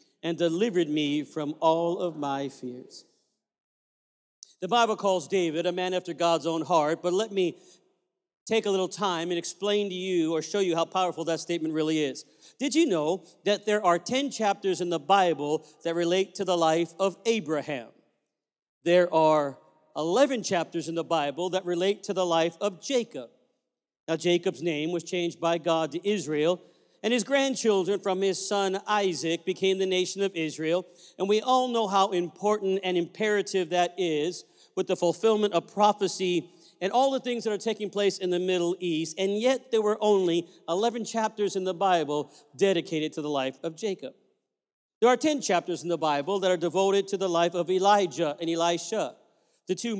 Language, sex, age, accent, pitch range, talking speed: English, male, 50-69, American, 170-205 Hz, 185 wpm